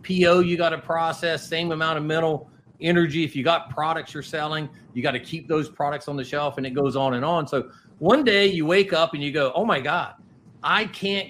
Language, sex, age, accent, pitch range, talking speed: English, male, 40-59, American, 135-185 Hz, 240 wpm